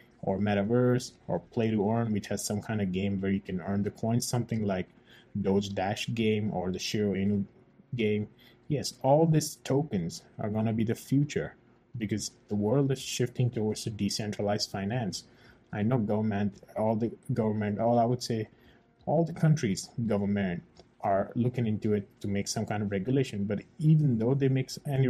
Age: 20-39